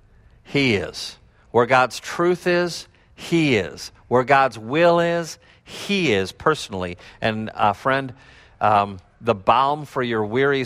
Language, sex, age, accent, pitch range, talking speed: English, male, 50-69, American, 100-130 Hz, 135 wpm